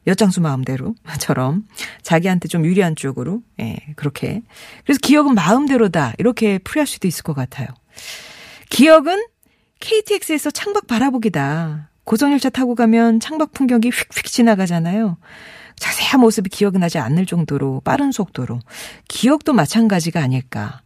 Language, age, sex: Korean, 40-59, female